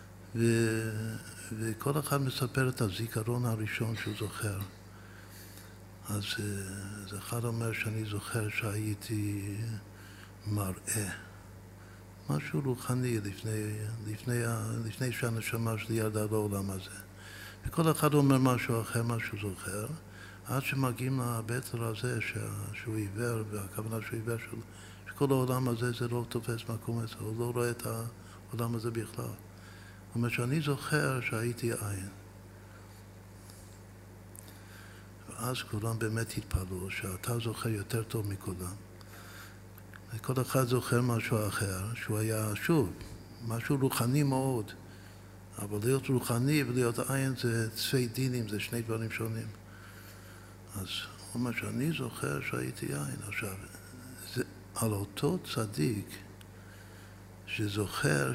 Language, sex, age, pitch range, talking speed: Hebrew, male, 60-79, 100-120 Hz, 115 wpm